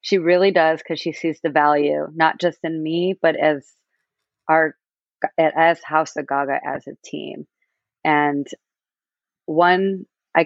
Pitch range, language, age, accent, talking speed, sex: 145-165 Hz, English, 30-49, American, 145 wpm, female